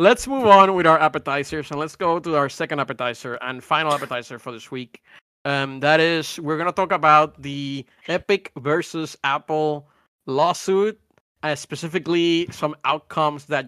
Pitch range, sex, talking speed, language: 140-170 Hz, male, 160 wpm, English